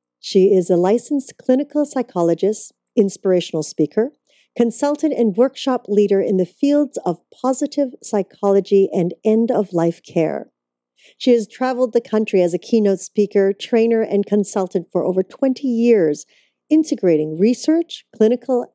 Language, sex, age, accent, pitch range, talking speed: English, female, 40-59, American, 175-235 Hz, 130 wpm